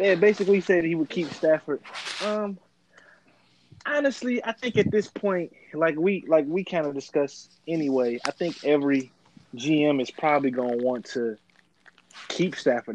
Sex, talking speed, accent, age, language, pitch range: male, 155 wpm, American, 20-39, English, 125-155 Hz